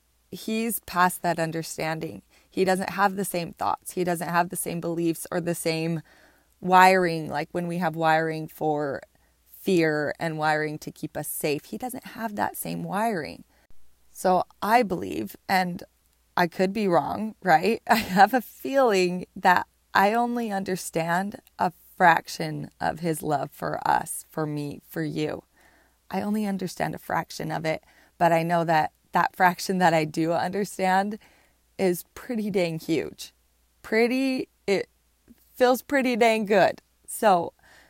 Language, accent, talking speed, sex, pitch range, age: English, American, 150 wpm, female, 155-190 Hz, 20-39